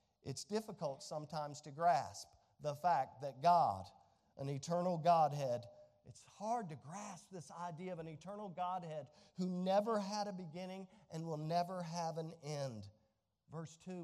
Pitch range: 165-240 Hz